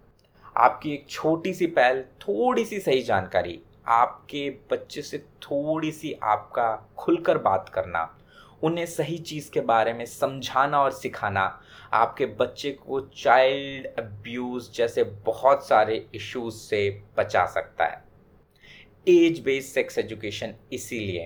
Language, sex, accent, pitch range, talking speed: Hindi, male, native, 130-175 Hz, 125 wpm